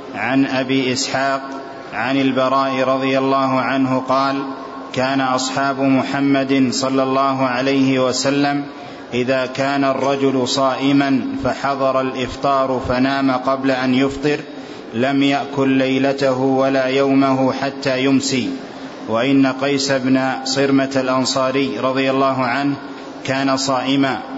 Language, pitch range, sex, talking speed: Arabic, 130-140 Hz, male, 105 wpm